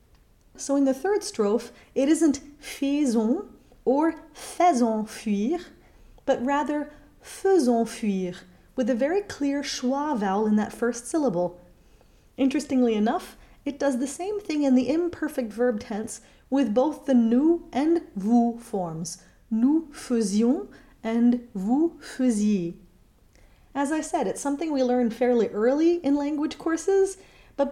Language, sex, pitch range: English, female, 230-295 Hz